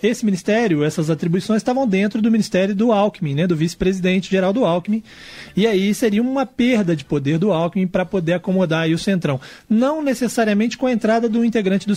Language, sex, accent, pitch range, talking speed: Portuguese, male, Brazilian, 170-215 Hz, 190 wpm